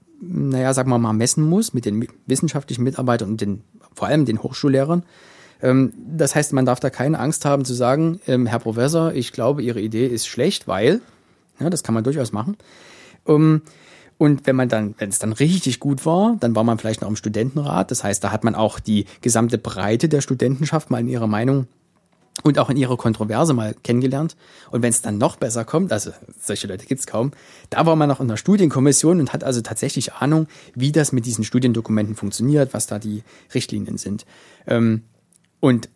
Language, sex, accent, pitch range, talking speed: German, male, German, 110-150 Hz, 195 wpm